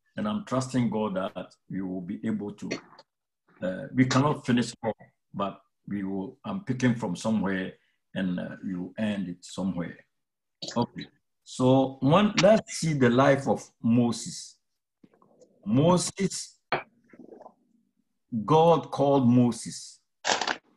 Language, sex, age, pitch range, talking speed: English, male, 60-79, 120-165 Hz, 120 wpm